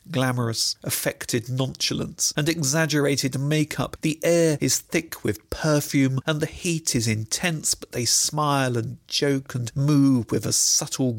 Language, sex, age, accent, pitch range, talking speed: English, male, 40-59, British, 120-155 Hz, 145 wpm